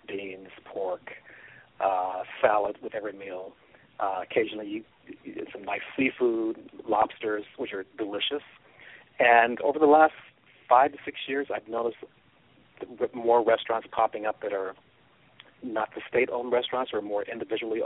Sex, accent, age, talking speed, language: male, American, 40-59, 145 wpm, English